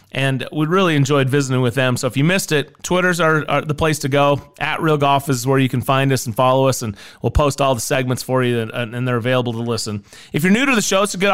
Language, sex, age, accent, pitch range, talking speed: English, male, 30-49, American, 130-165 Hz, 285 wpm